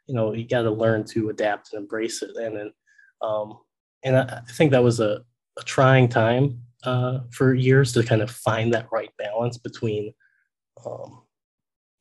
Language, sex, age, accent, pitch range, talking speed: English, male, 20-39, American, 110-125 Hz, 180 wpm